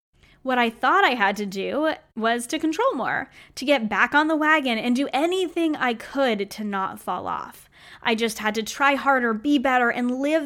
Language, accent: English, American